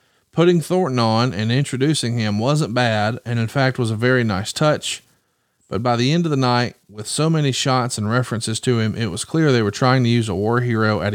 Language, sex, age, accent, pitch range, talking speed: English, male, 40-59, American, 110-140 Hz, 230 wpm